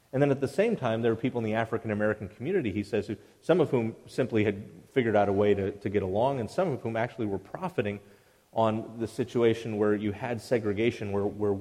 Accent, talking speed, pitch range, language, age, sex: American, 225 wpm, 105-125 Hz, English, 40-59, male